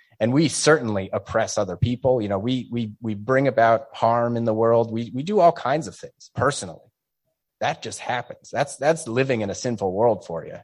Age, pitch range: 30-49, 105-135 Hz